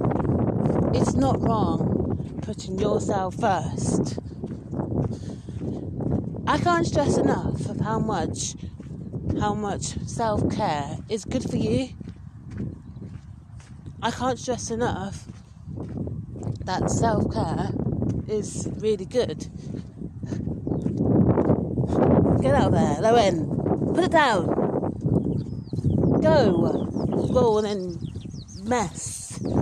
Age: 30-49